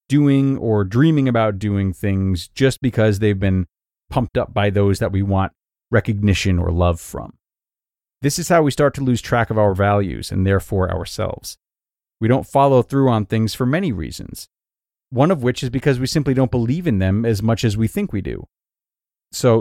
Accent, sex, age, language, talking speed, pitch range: American, male, 30-49, English, 195 wpm, 100-130 Hz